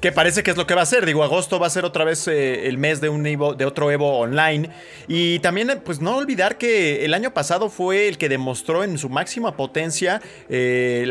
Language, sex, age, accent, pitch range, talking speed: Spanish, male, 30-49, Mexican, 130-175 Hz, 240 wpm